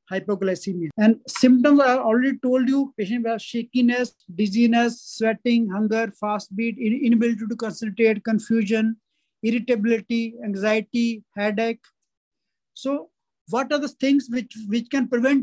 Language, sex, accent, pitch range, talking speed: English, male, Indian, 210-240 Hz, 120 wpm